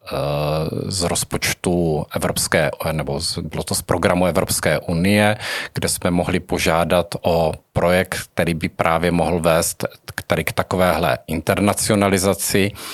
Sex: male